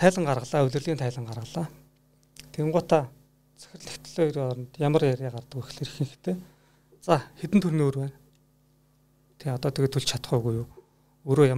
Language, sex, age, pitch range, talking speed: Russian, male, 40-59, 130-145 Hz, 135 wpm